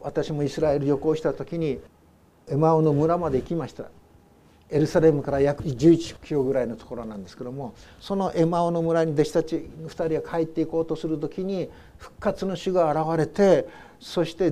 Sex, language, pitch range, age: male, Japanese, 140-185 Hz, 60-79